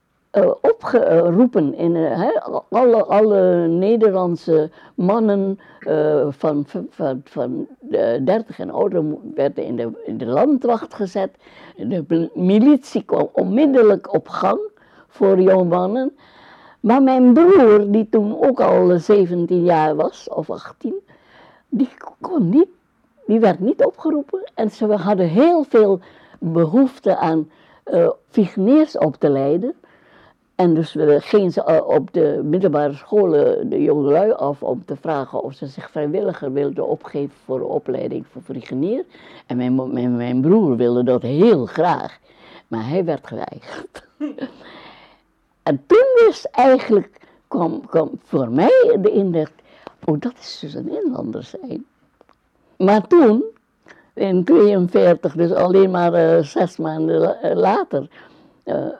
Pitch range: 165-255 Hz